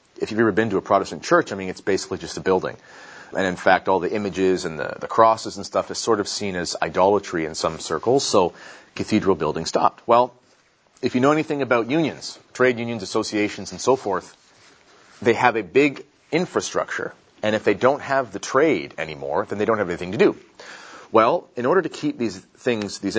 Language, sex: English, male